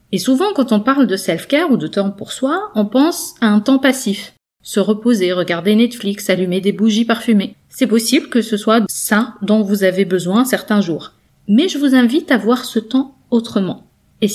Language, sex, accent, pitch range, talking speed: French, female, French, 195-245 Hz, 200 wpm